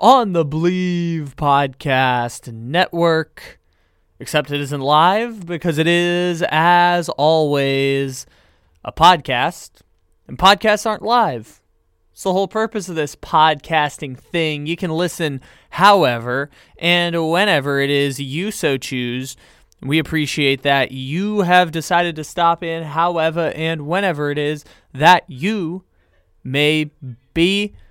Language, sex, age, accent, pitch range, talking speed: English, male, 20-39, American, 135-175 Hz, 125 wpm